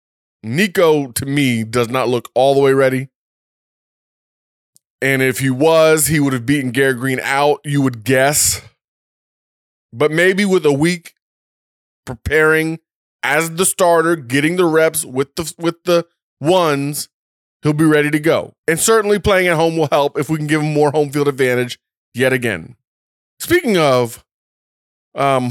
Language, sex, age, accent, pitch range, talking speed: English, male, 20-39, American, 135-175 Hz, 155 wpm